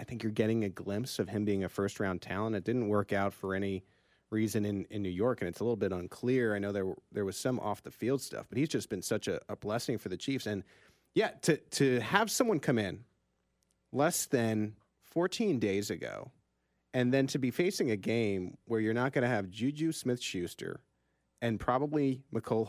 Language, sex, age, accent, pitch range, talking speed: English, male, 30-49, American, 100-130 Hz, 210 wpm